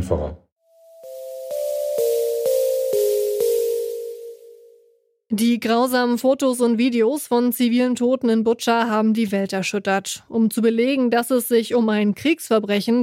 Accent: German